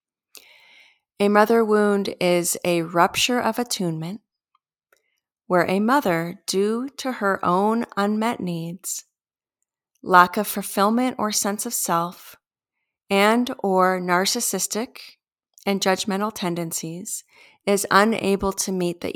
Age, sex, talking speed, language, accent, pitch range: 30-49, female, 110 wpm, English, American, 175-225 Hz